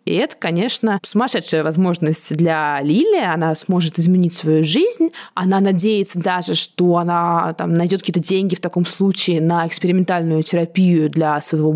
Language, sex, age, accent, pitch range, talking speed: Russian, female, 20-39, native, 175-240 Hz, 150 wpm